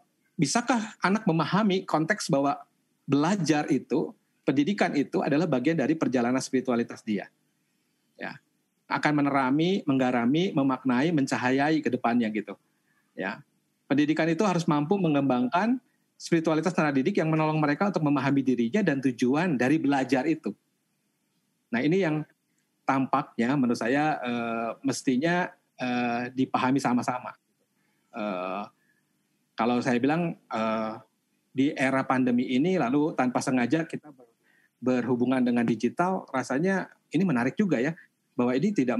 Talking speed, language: 120 wpm, Indonesian